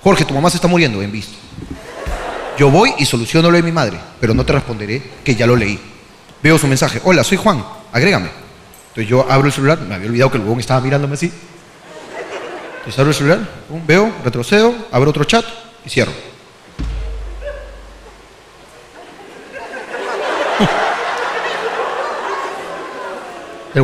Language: Spanish